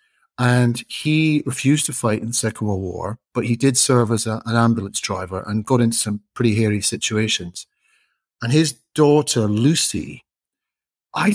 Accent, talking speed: British, 160 wpm